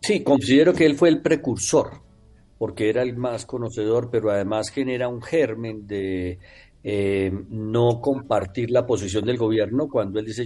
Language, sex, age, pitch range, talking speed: Spanish, male, 50-69, 110-150 Hz, 160 wpm